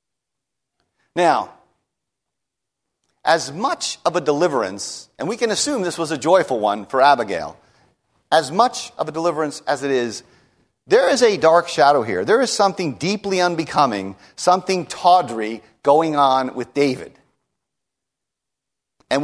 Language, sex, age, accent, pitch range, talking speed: English, male, 50-69, American, 145-205 Hz, 135 wpm